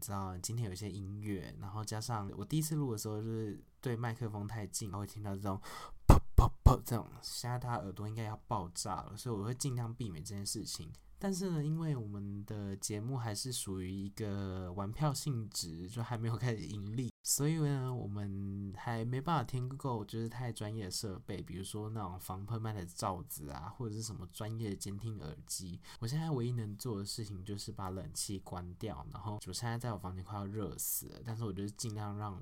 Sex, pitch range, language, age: male, 100-125 Hz, Chinese, 20-39